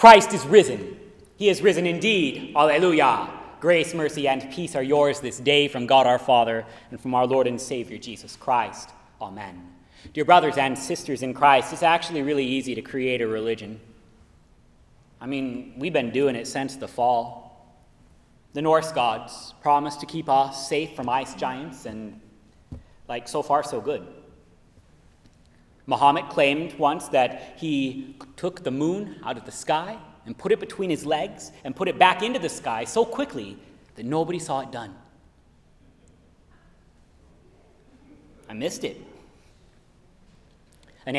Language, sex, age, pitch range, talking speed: English, male, 30-49, 125-180 Hz, 155 wpm